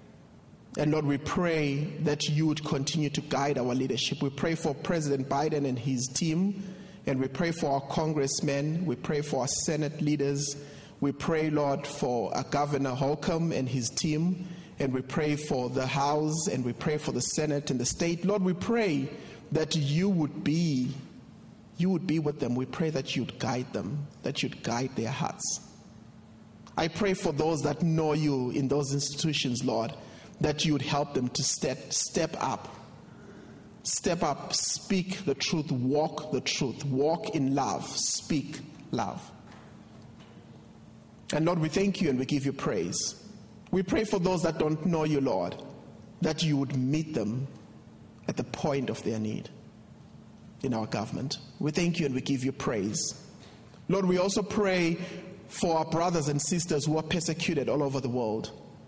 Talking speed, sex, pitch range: 175 wpm, male, 140-165 Hz